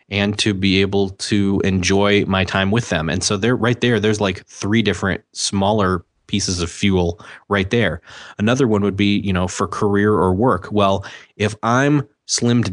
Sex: male